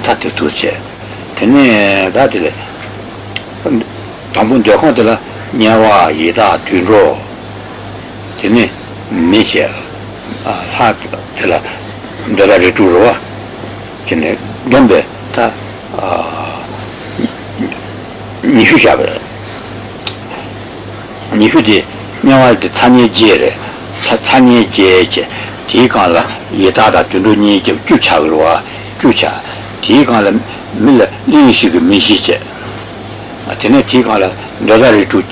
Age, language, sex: 60-79, Italian, male